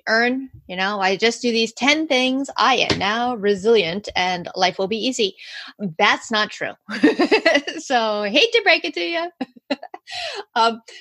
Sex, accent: female, American